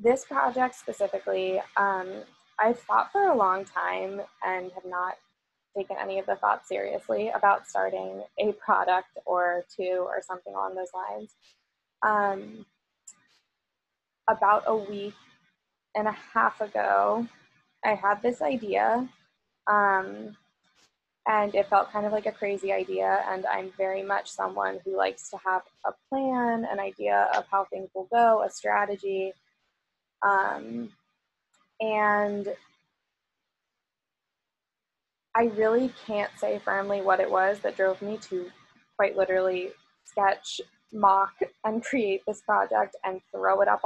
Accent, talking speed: American, 135 wpm